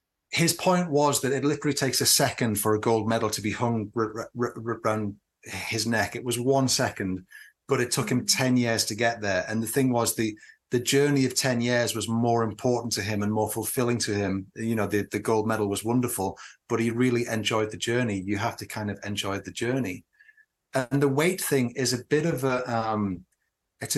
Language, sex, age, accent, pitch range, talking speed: English, male, 30-49, British, 115-140 Hz, 225 wpm